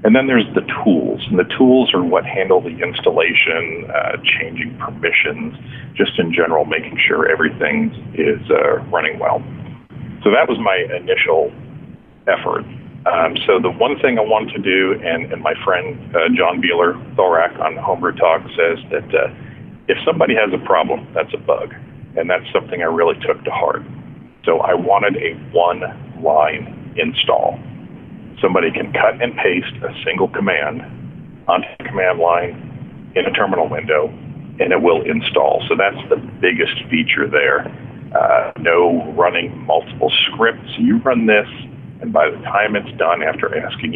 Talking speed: 160 wpm